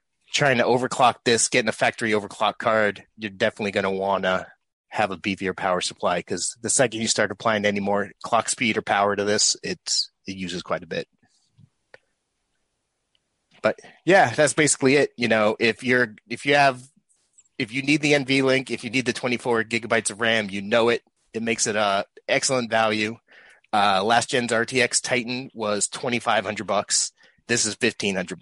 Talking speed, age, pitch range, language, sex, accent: 180 wpm, 30-49, 105-125 Hz, English, male, American